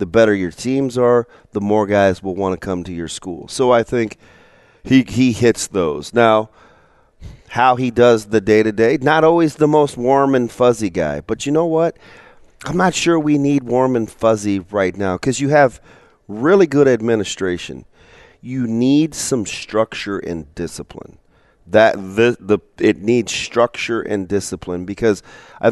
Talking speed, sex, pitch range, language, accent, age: 170 wpm, male, 95-125 Hz, English, American, 40-59